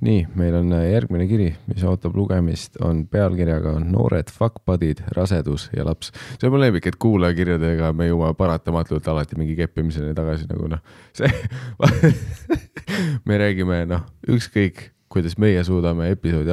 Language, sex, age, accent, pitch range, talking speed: English, male, 30-49, Finnish, 80-105 Hz, 145 wpm